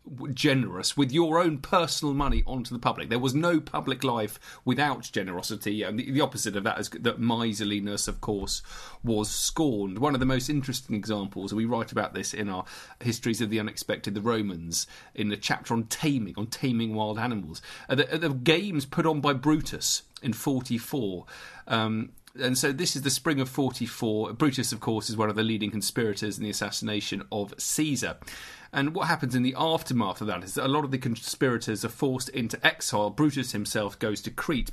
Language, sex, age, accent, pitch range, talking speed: English, male, 40-59, British, 110-150 Hz, 195 wpm